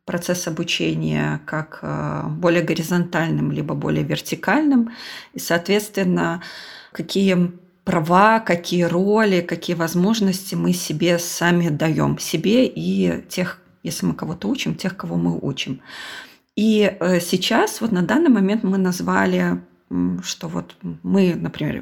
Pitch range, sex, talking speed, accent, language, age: 165-200 Hz, female, 120 wpm, native, Russian, 30-49